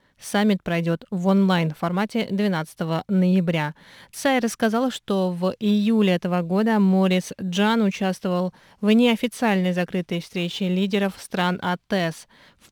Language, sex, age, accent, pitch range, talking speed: Russian, female, 20-39, native, 185-215 Hz, 120 wpm